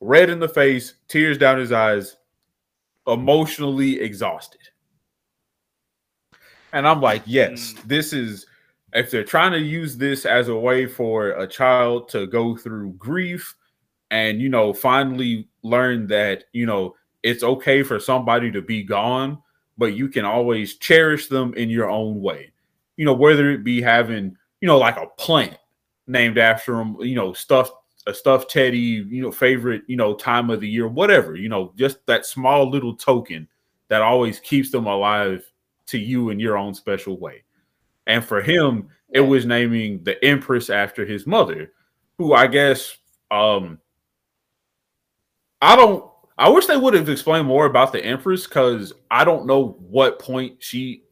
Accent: American